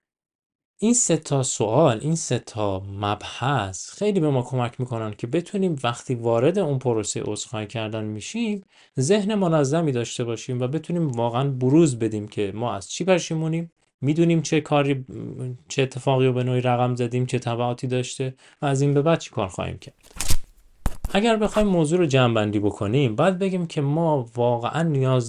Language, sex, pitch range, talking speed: Persian, male, 110-150 Hz, 170 wpm